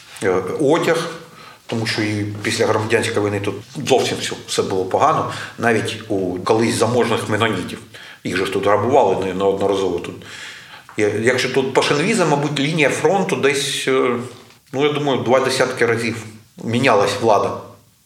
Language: Ukrainian